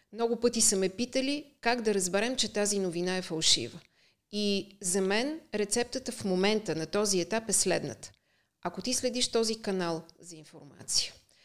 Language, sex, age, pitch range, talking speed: Bulgarian, female, 30-49, 175-210 Hz, 160 wpm